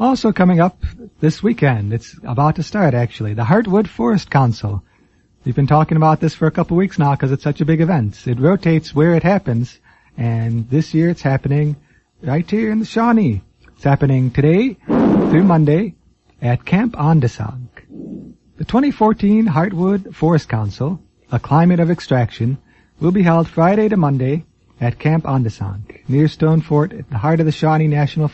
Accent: American